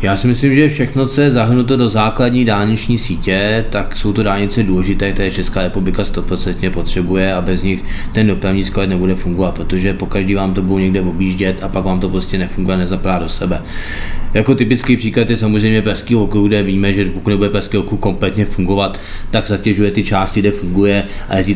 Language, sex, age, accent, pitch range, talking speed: Czech, male, 20-39, native, 95-110 Hz, 195 wpm